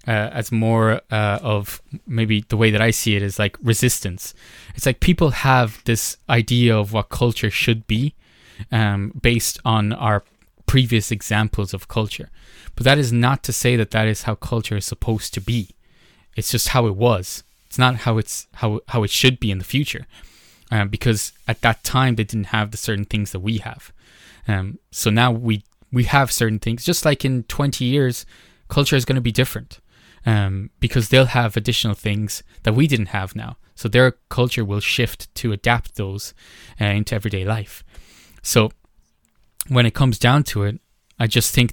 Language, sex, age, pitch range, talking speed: English, male, 20-39, 105-120 Hz, 190 wpm